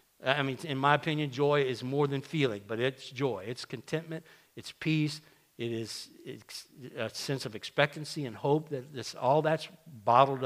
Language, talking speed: English, 180 wpm